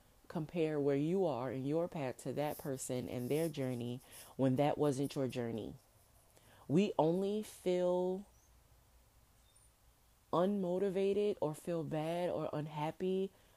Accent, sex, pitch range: American, female, 140-180 Hz